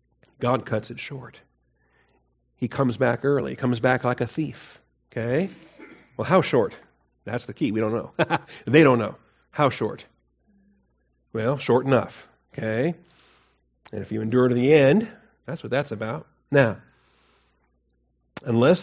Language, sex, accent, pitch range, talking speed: English, male, American, 115-145 Hz, 145 wpm